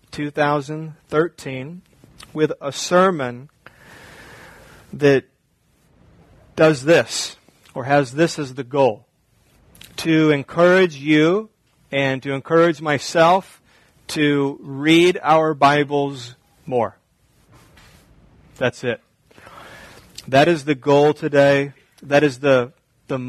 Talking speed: 95 wpm